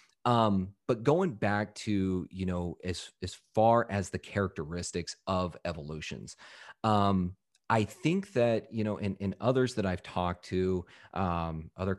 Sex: male